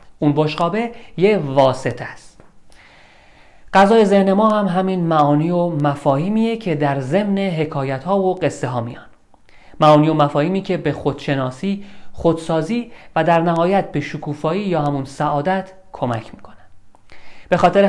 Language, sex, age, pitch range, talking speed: Persian, male, 40-59, 140-190 Hz, 140 wpm